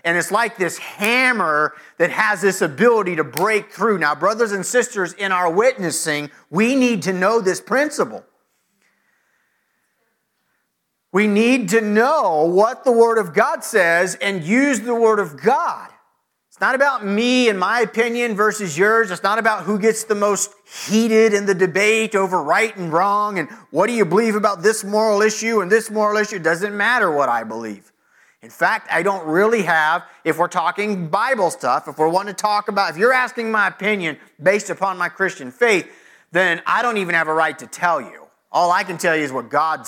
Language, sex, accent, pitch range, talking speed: English, male, American, 170-220 Hz, 195 wpm